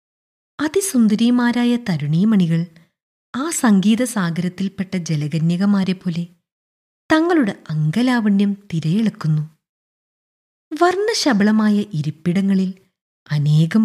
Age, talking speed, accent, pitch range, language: 20-39, 50 wpm, native, 160-225 Hz, Malayalam